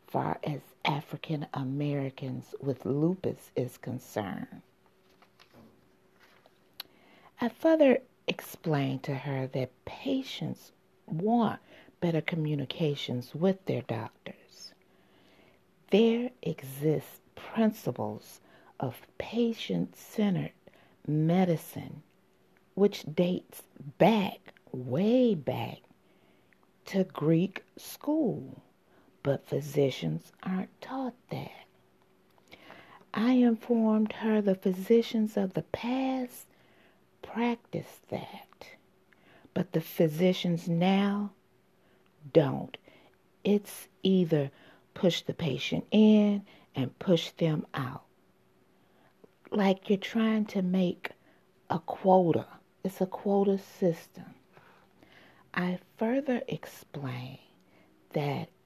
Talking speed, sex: 80 wpm, female